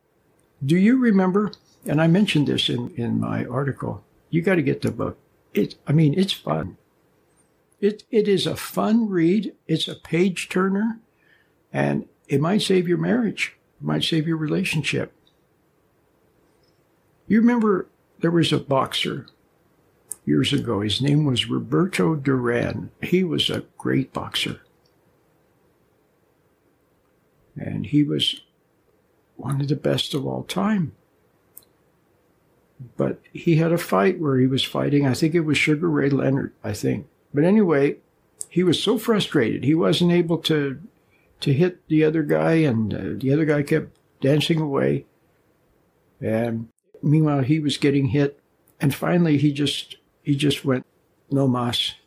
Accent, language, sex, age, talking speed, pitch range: American, English, male, 60-79, 145 wpm, 130-170 Hz